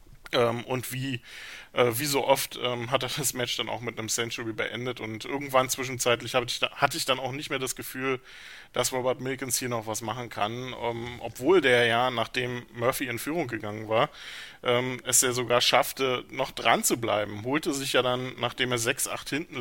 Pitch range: 115-130 Hz